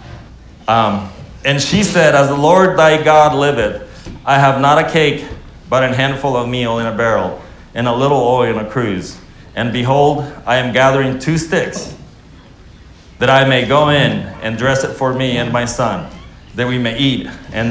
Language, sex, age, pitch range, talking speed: English, male, 40-59, 120-165 Hz, 185 wpm